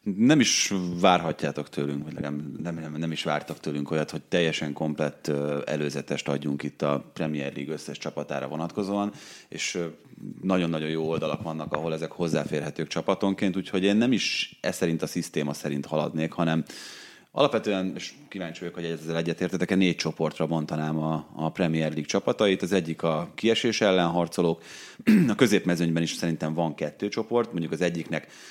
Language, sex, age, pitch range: Hungarian, male, 30-49, 75-95 Hz